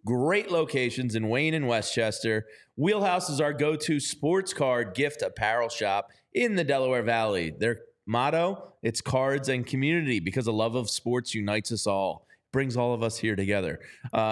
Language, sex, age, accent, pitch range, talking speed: English, male, 30-49, American, 115-150 Hz, 170 wpm